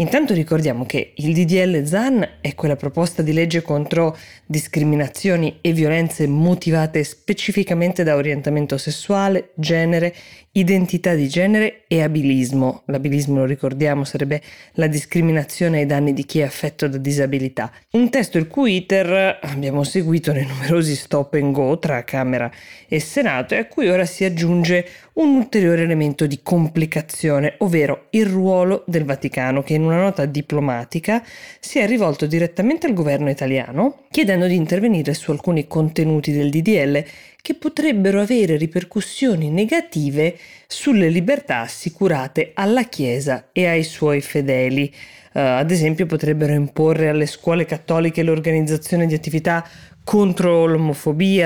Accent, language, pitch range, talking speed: native, Italian, 145-180 Hz, 140 wpm